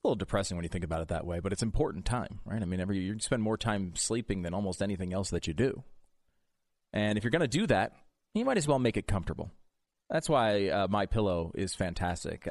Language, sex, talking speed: English, male, 245 wpm